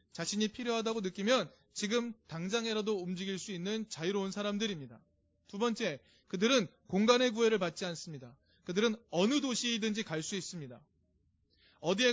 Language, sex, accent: Korean, male, native